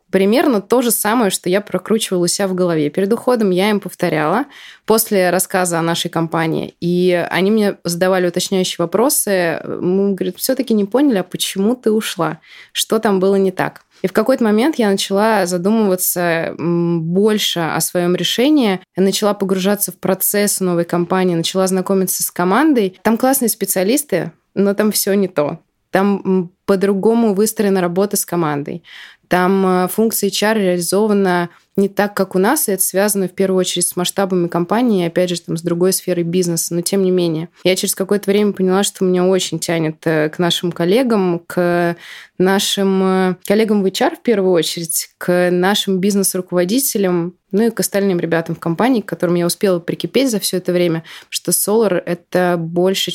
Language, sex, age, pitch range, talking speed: Russian, female, 20-39, 175-205 Hz, 165 wpm